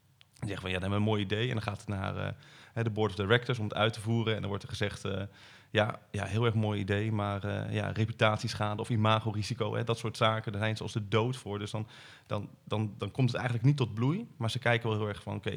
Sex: male